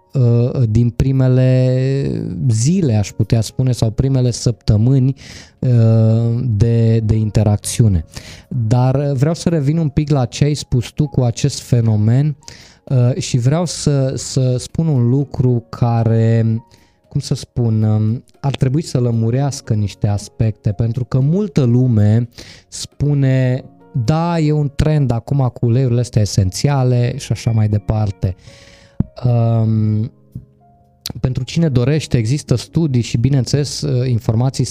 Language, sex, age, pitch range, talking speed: Romanian, male, 20-39, 115-140 Hz, 120 wpm